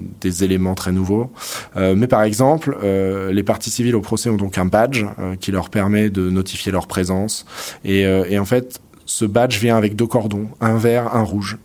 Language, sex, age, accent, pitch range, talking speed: French, male, 20-39, French, 95-115 Hz, 210 wpm